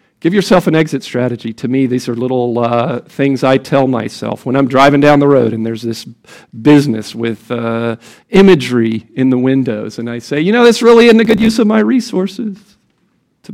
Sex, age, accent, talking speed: male, 50-69, American, 205 wpm